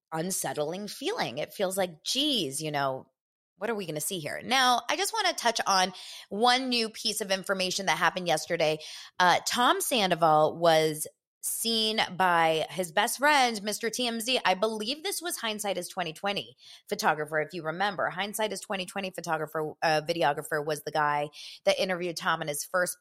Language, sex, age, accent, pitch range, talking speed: English, female, 20-39, American, 155-200 Hz, 175 wpm